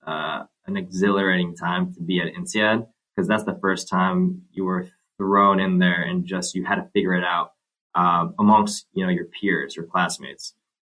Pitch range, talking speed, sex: 95-135 Hz, 190 wpm, male